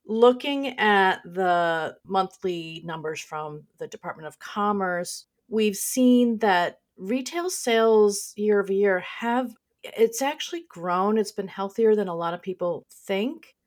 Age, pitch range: 40-59, 170-225 Hz